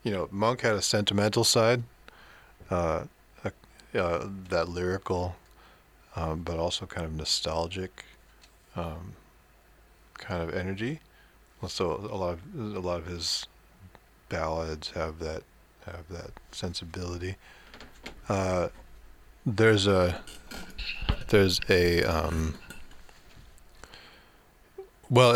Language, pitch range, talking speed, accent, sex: English, 85-100 Hz, 100 wpm, American, male